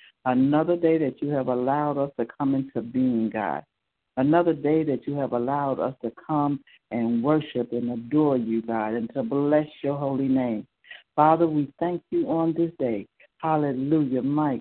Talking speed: 175 wpm